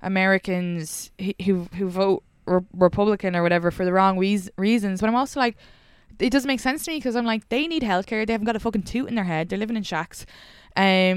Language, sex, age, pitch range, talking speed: English, female, 20-39, 190-265 Hz, 230 wpm